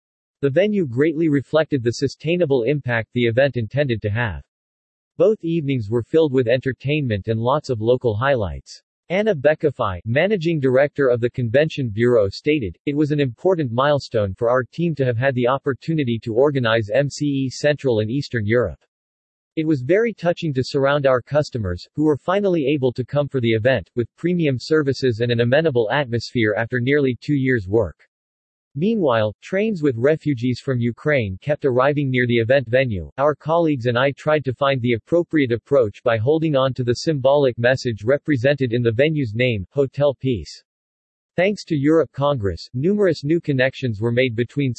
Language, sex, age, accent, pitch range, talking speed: English, male, 40-59, American, 120-150 Hz, 170 wpm